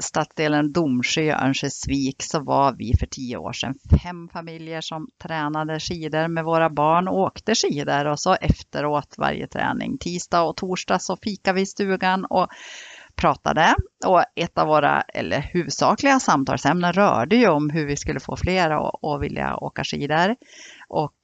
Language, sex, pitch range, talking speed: Swedish, female, 145-190 Hz, 160 wpm